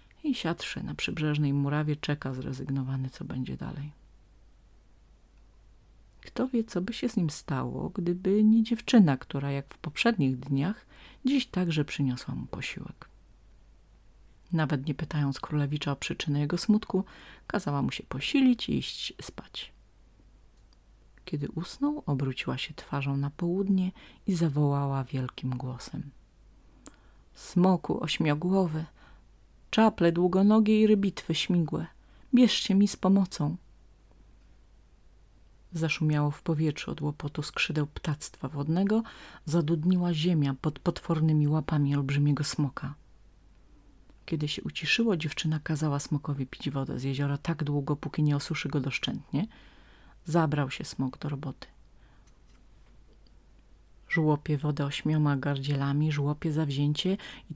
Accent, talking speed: native, 115 wpm